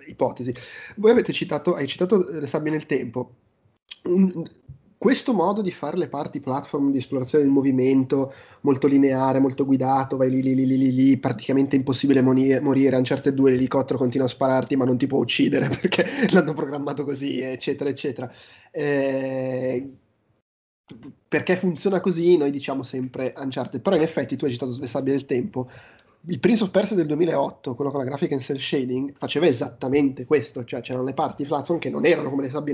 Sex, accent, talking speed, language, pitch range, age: male, native, 180 wpm, Italian, 130-155 Hz, 20-39